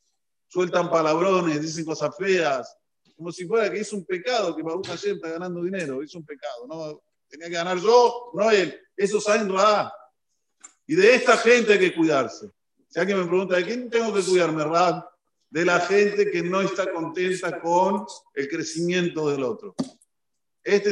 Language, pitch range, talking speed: Spanish, 170-215 Hz, 180 wpm